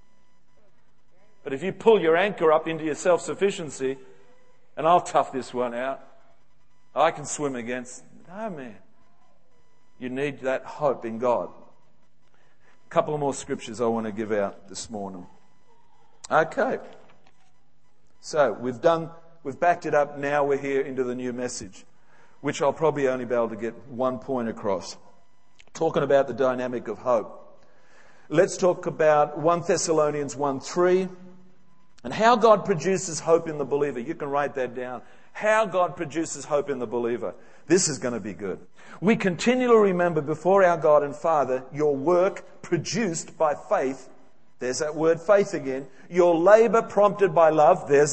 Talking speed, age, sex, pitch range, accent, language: 160 wpm, 50-69, male, 135-195 Hz, Australian, English